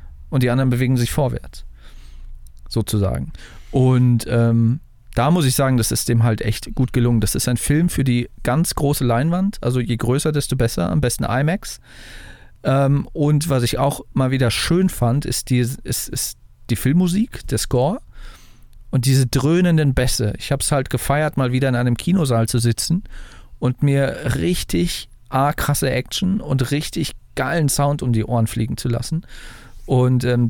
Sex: male